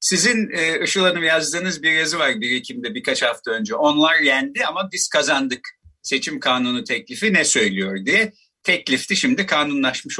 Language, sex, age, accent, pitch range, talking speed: Turkish, male, 50-69, native, 140-225 Hz, 155 wpm